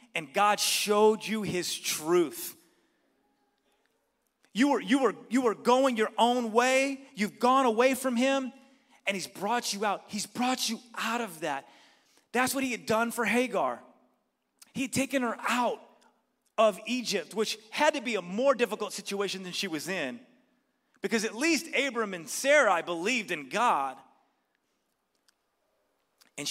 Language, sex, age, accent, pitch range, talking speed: English, male, 30-49, American, 190-240 Hz, 145 wpm